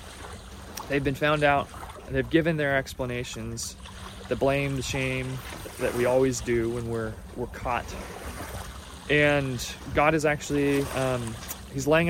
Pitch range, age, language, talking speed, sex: 95-150 Hz, 30-49, English, 140 wpm, male